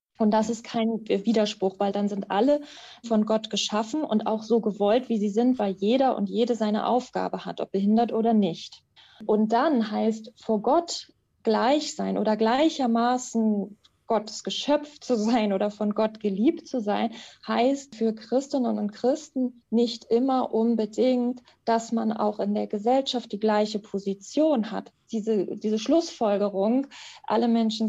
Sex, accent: female, German